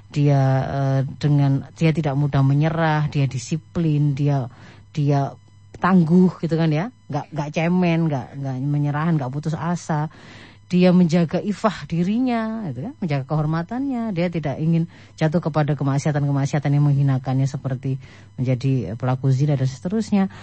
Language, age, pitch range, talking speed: Indonesian, 30-49, 135-185 Hz, 130 wpm